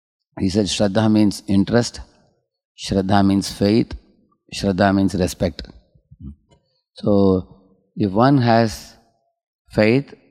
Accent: Indian